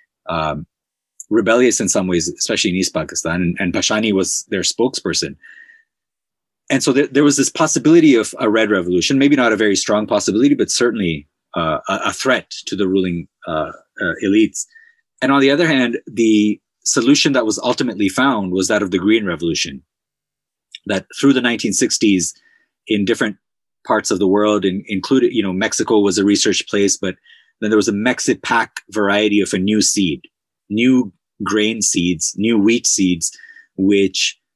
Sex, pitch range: male, 100-140 Hz